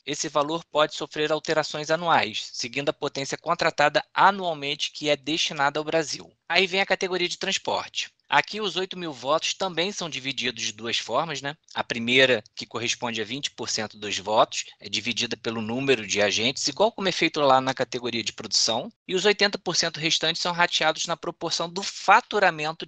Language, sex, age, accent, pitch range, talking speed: Portuguese, male, 20-39, Brazilian, 130-175 Hz, 175 wpm